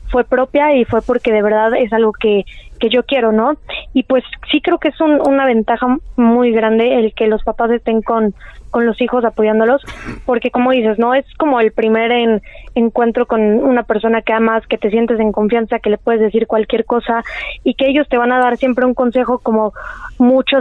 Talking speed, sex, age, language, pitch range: 215 wpm, female, 20-39, Spanish, 225-255 Hz